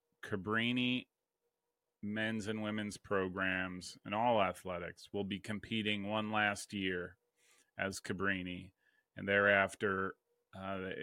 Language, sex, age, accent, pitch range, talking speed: English, male, 40-59, American, 90-105 Hz, 105 wpm